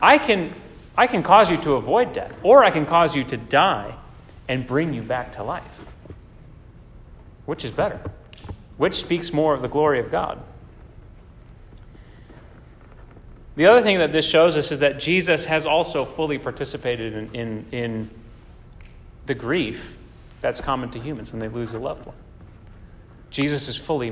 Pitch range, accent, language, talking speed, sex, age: 115-155 Hz, American, English, 160 wpm, male, 30-49